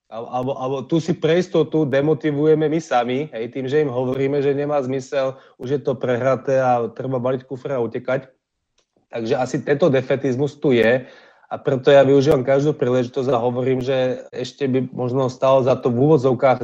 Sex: male